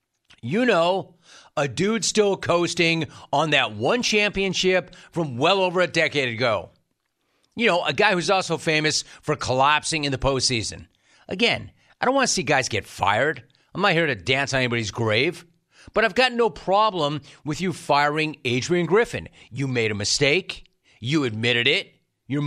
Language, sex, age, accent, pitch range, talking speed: English, male, 40-59, American, 130-185 Hz, 170 wpm